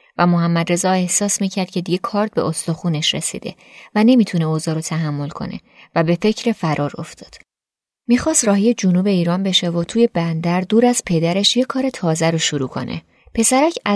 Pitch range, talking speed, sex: 165-215 Hz, 170 wpm, female